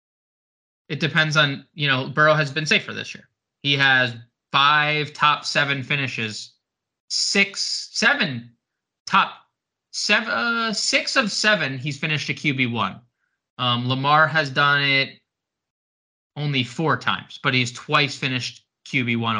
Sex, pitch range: male, 130-170 Hz